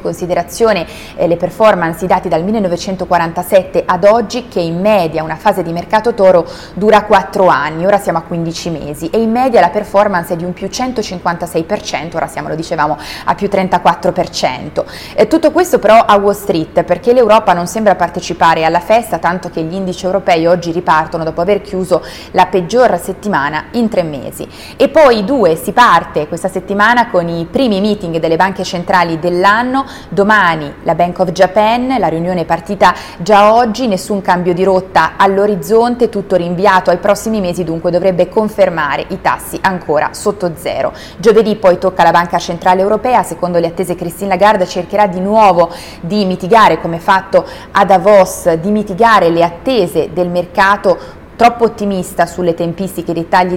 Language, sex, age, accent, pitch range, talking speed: Italian, female, 20-39, native, 170-210 Hz, 170 wpm